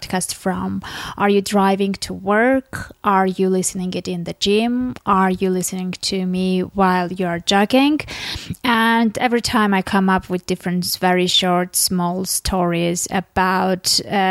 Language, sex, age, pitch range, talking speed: English, female, 20-39, 185-215 Hz, 150 wpm